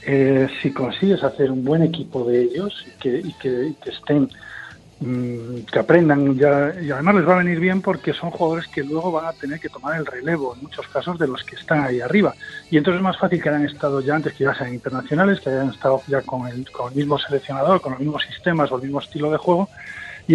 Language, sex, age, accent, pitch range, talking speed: Spanish, male, 40-59, Spanish, 140-175 Hz, 245 wpm